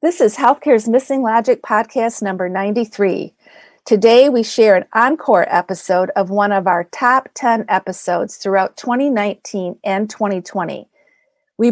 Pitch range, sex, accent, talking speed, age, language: 190-245 Hz, female, American, 135 wpm, 50-69, English